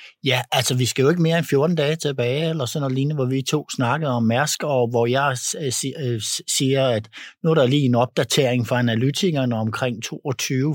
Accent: native